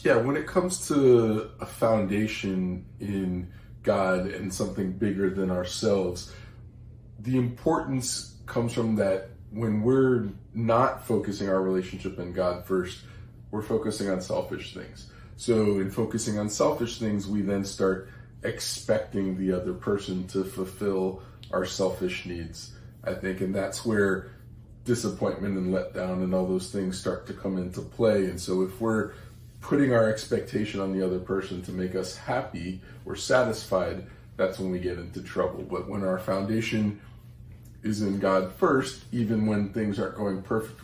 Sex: male